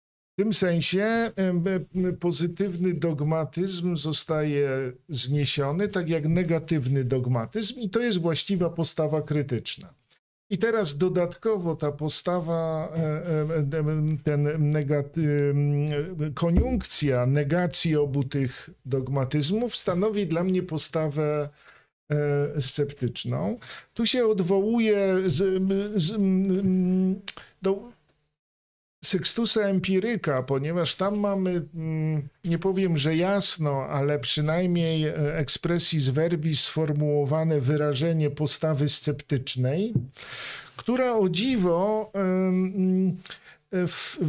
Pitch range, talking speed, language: 145-185 Hz, 75 wpm, Polish